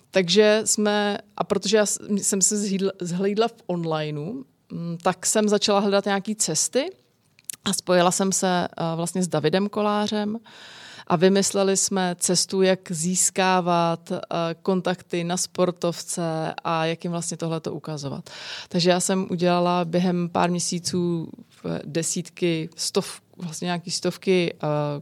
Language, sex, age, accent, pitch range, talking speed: Czech, female, 20-39, native, 170-195 Hz, 125 wpm